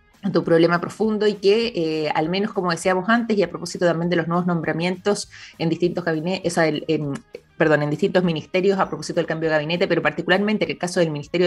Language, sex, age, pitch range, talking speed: Spanish, female, 20-39, 155-200 Hz, 205 wpm